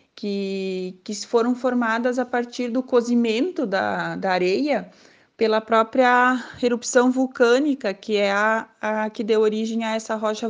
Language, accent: Portuguese, Brazilian